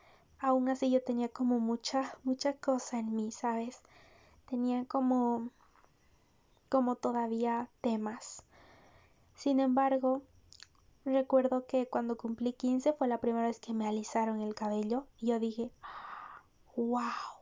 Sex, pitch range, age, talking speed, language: female, 225-255 Hz, 20-39, 125 wpm, Spanish